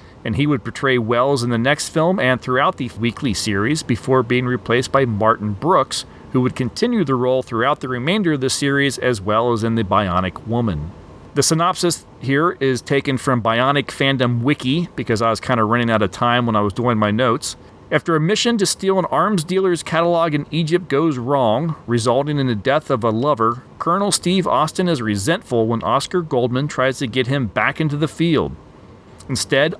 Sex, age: male, 40-59